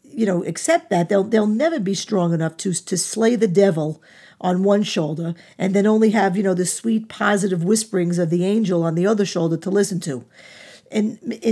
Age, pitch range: 50-69, 175-220 Hz